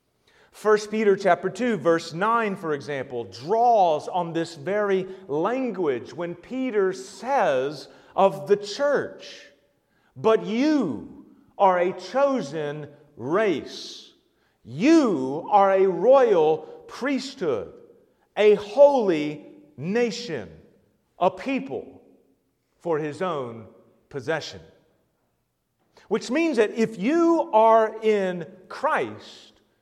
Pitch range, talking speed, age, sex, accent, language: 175-265 Hz, 95 wpm, 40-59, male, American, English